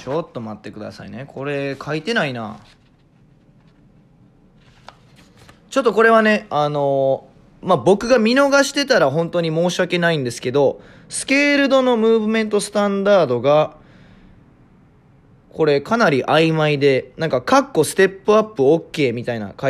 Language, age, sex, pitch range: Japanese, 20-39, male, 130-195 Hz